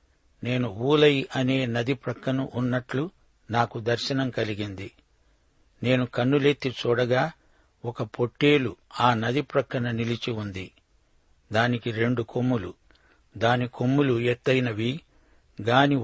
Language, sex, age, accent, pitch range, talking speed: Telugu, male, 60-79, native, 115-135 Hz, 95 wpm